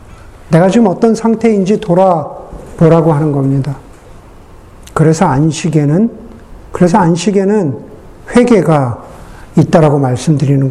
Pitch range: 170-235 Hz